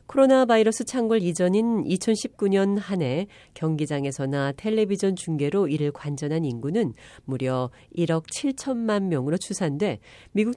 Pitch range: 140-205 Hz